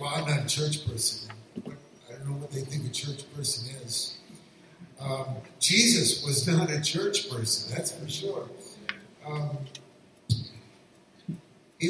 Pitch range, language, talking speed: 140-190 Hz, English, 140 wpm